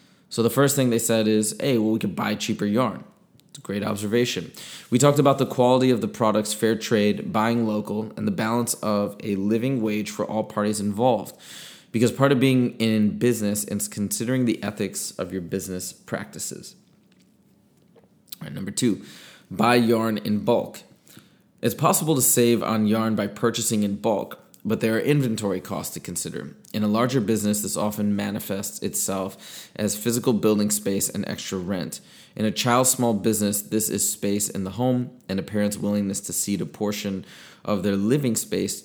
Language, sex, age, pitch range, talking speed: English, male, 20-39, 105-120 Hz, 180 wpm